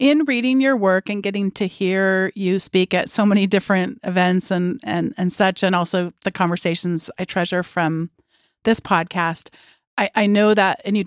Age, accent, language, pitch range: 40-59, American, English, 175-210 Hz